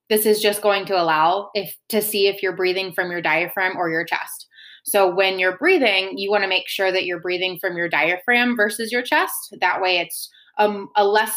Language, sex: English, female